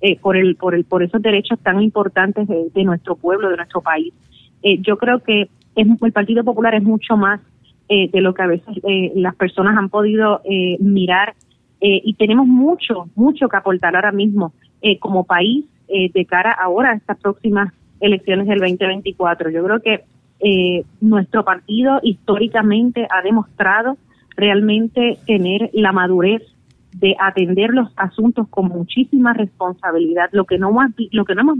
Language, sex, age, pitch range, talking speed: Spanish, female, 30-49, 185-215 Hz, 165 wpm